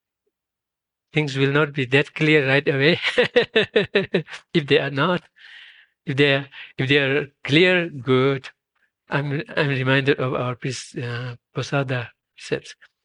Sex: male